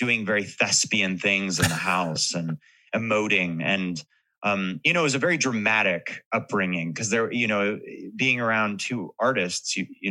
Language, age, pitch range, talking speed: English, 30-49, 95-125 Hz, 165 wpm